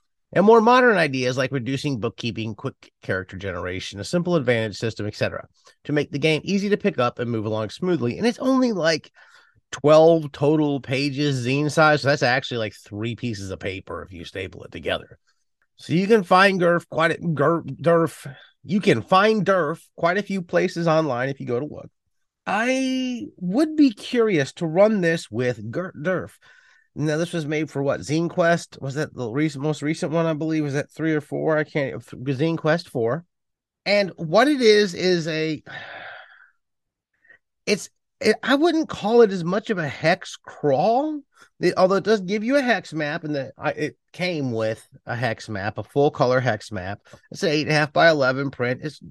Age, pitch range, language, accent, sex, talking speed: 30-49, 135-185 Hz, English, American, male, 195 wpm